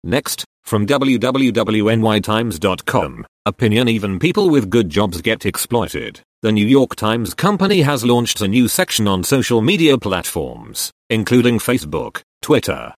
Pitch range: 100-125 Hz